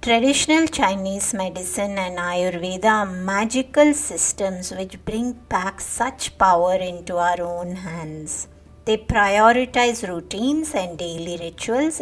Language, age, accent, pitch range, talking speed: English, 60-79, Indian, 180-250 Hz, 115 wpm